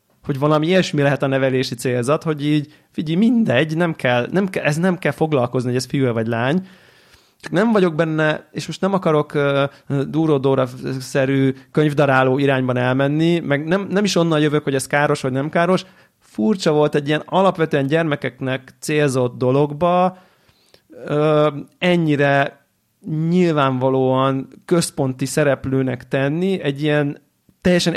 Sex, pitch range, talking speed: male, 135-165 Hz, 140 wpm